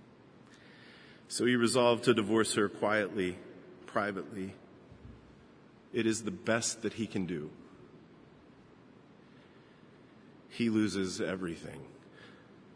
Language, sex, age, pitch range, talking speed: English, male, 40-59, 105-125 Hz, 90 wpm